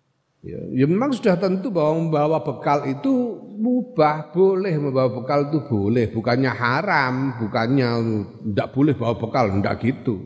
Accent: native